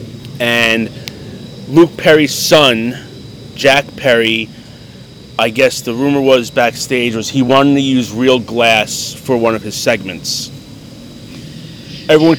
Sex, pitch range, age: male, 115-145 Hz, 30-49